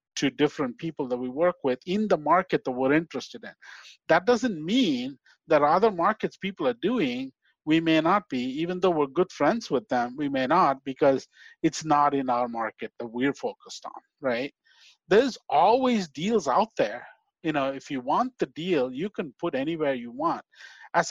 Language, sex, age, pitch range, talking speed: English, male, 50-69, 140-230 Hz, 190 wpm